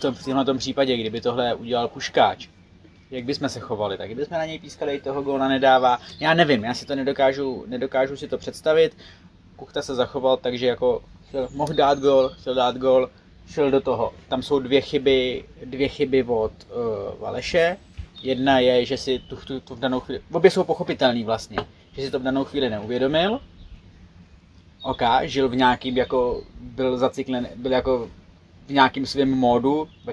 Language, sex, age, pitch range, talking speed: Czech, male, 20-39, 120-135 Hz, 185 wpm